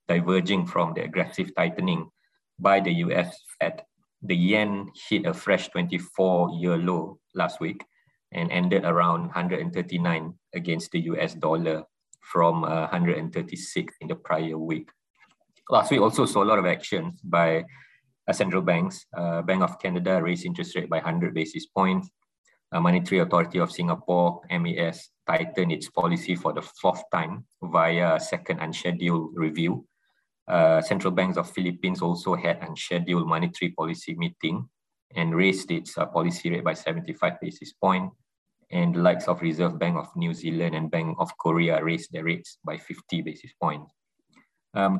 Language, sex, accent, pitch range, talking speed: English, male, Malaysian, 85-100 Hz, 145 wpm